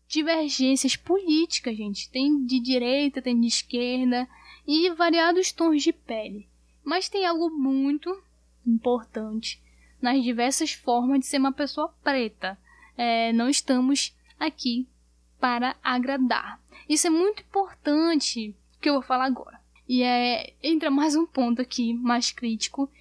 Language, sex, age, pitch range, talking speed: Portuguese, female, 10-29, 235-285 Hz, 135 wpm